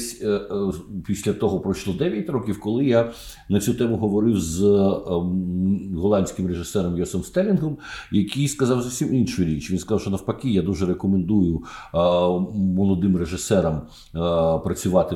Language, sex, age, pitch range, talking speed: Ukrainian, male, 50-69, 95-115 Hz, 125 wpm